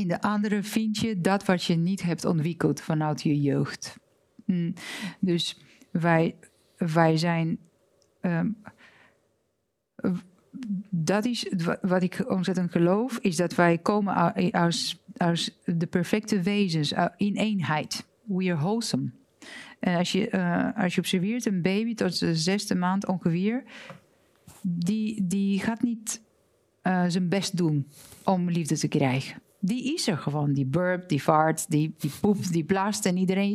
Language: Dutch